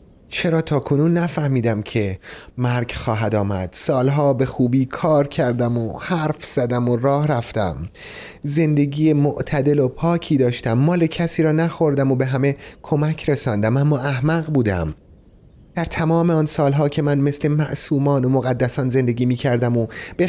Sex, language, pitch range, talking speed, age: male, Persian, 125-155 Hz, 150 wpm, 30-49